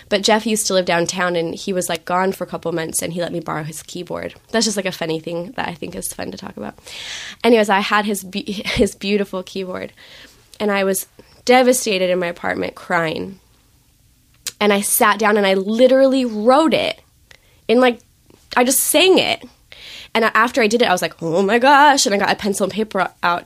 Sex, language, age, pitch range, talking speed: female, English, 20-39, 175-210 Hz, 215 wpm